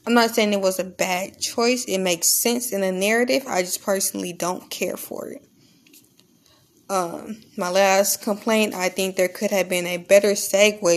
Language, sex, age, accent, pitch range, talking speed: English, female, 20-39, American, 185-220 Hz, 185 wpm